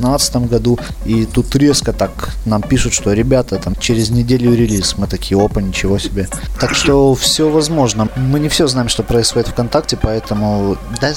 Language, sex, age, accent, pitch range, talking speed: Russian, male, 20-39, native, 110-130 Hz, 165 wpm